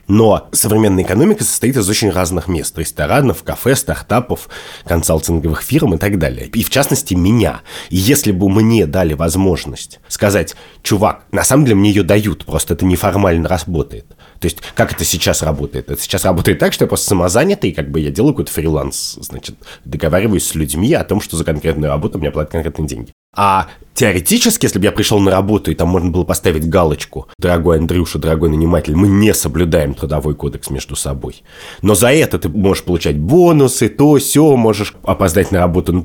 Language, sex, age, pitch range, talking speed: Russian, male, 20-39, 80-105 Hz, 180 wpm